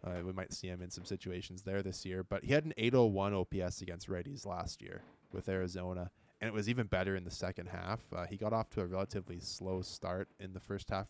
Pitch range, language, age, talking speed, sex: 95-105 Hz, English, 20-39, 245 wpm, male